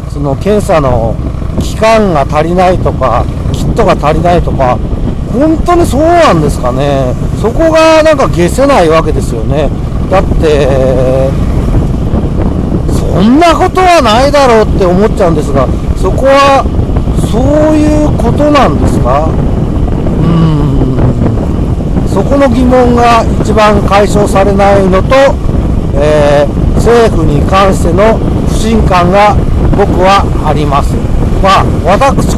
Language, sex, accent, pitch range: Japanese, male, native, 145-220 Hz